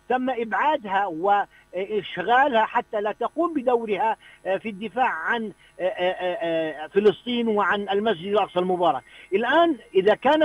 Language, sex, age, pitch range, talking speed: Arabic, male, 50-69, 195-255 Hz, 105 wpm